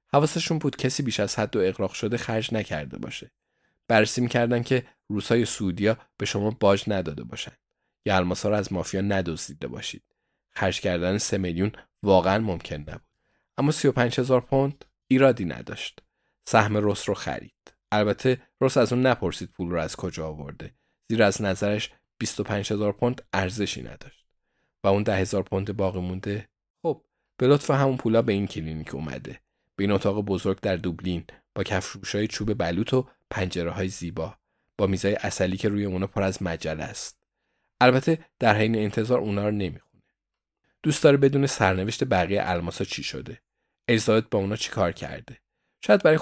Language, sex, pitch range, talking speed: Persian, male, 95-115 Hz, 155 wpm